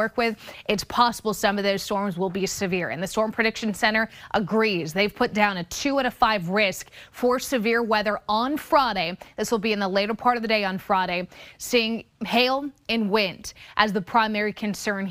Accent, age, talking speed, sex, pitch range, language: American, 20-39, 200 wpm, female, 195-240 Hz, English